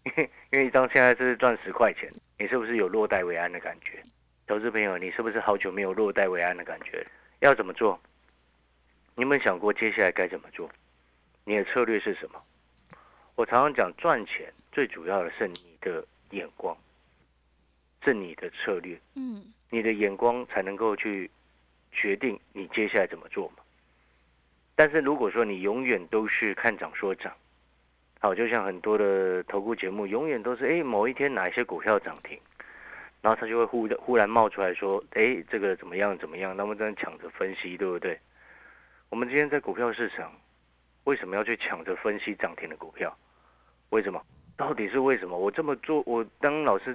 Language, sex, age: Chinese, male, 50-69